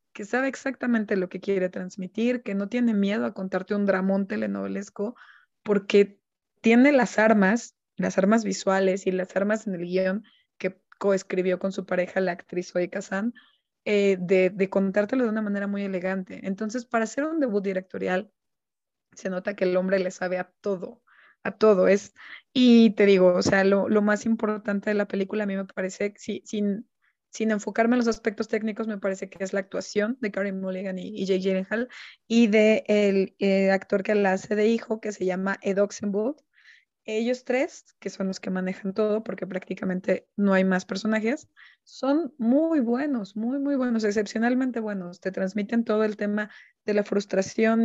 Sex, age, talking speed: female, 20-39, 185 wpm